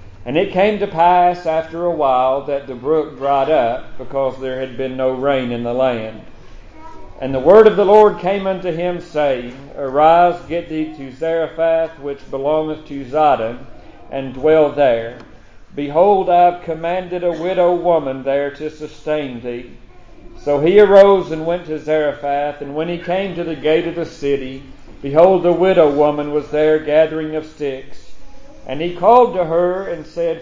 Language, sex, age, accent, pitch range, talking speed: English, male, 50-69, American, 140-175 Hz, 175 wpm